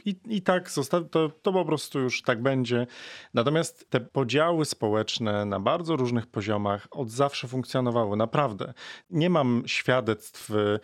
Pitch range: 115-145 Hz